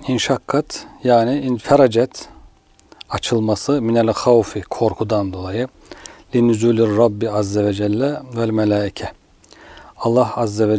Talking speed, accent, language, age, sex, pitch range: 100 wpm, native, Turkish, 40-59, male, 105-125 Hz